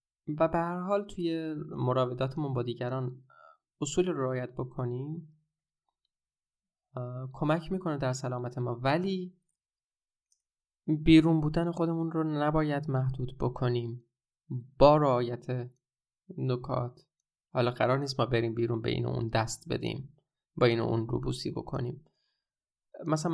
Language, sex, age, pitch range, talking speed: Persian, male, 20-39, 130-160 Hz, 115 wpm